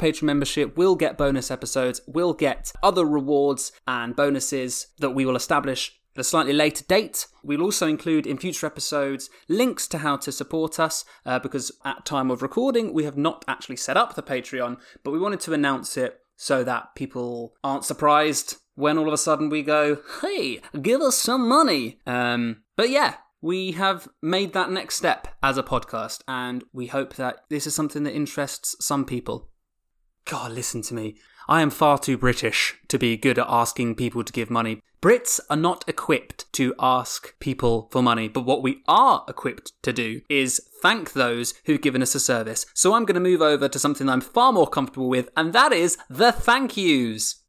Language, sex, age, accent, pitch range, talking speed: English, male, 20-39, British, 130-160 Hz, 195 wpm